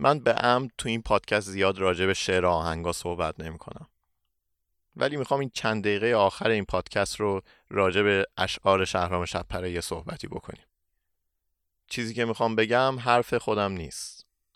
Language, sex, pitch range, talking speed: Persian, male, 85-110 Hz, 155 wpm